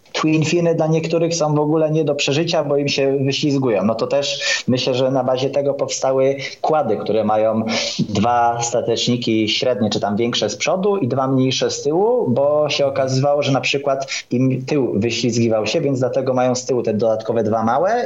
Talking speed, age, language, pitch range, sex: 190 wpm, 20-39, Polish, 120-150 Hz, male